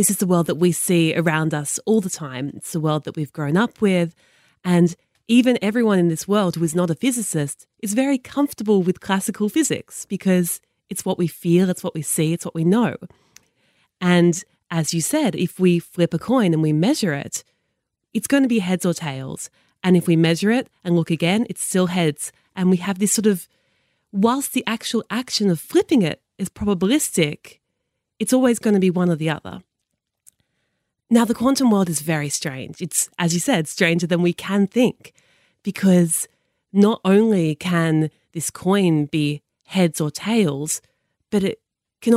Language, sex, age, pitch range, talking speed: English, female, 20-39, 165-215 Hz, 190 wpm